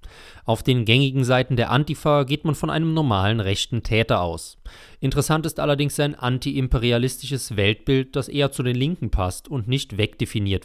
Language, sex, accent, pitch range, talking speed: German, male, German, 105-135 Hz, 165 wpm